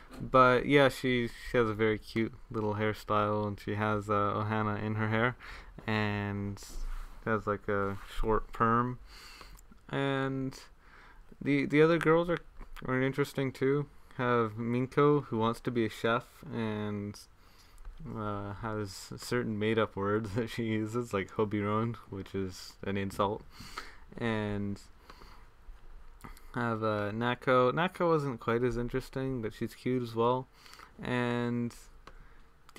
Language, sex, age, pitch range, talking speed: English, male, 20-39, 105-125 Hz, 130 wpm